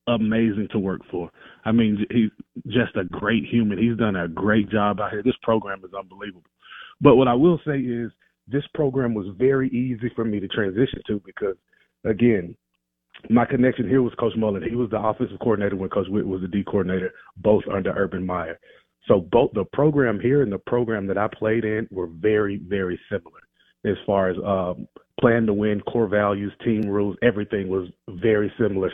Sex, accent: male, American